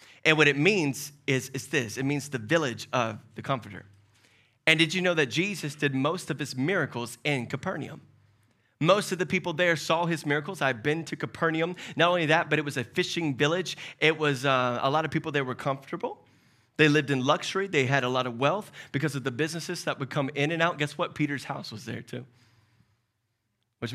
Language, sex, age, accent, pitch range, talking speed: English, male, 30-49, American, 125-175 Hz, 215 wpm